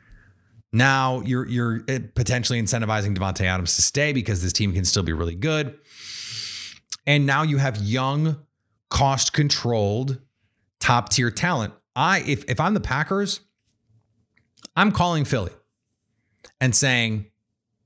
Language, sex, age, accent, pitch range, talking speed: English, male, 30-49, American, 110-135 Hz, 120 wpm